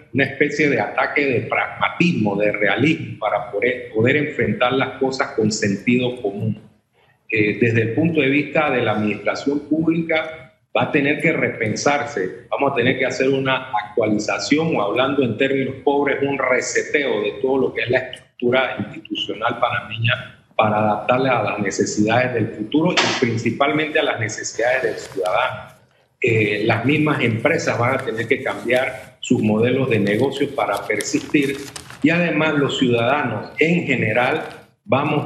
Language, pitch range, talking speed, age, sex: Spanish, 115-145 Hz, 155 wpm, 40-59, male